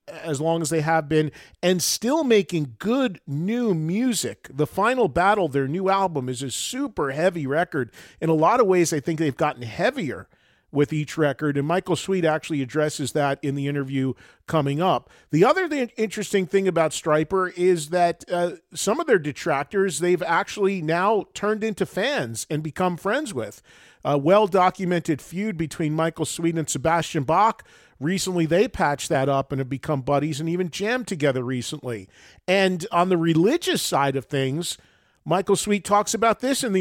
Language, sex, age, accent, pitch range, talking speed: English, male, 40-59, American, 150-195 Hz, 175 wpm